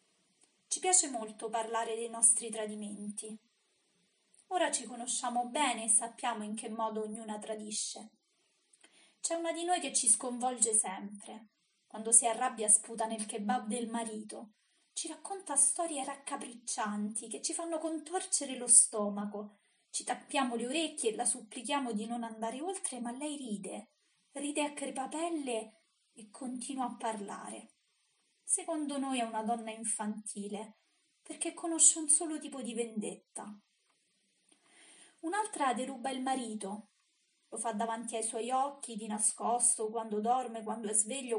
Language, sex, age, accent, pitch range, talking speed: Italian, female, 20-39, native, 225-285 Hz, 140 wpm